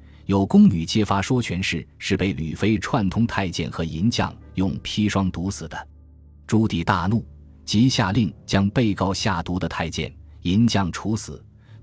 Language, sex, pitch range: Chinese, male, 80-110 Hz